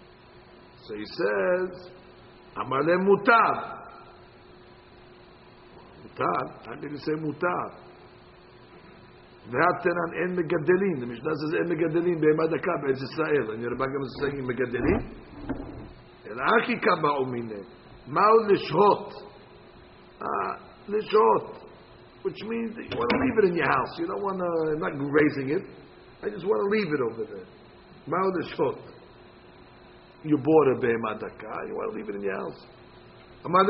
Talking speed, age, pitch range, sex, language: 100 wpm, 60-79, 140-220 Hz, male, English